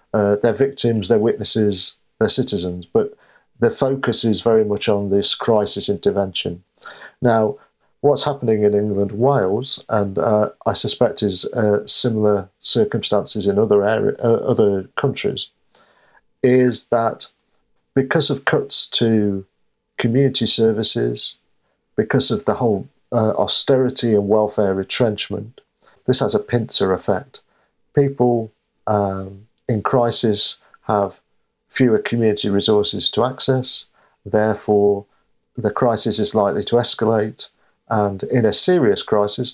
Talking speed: 125 wpm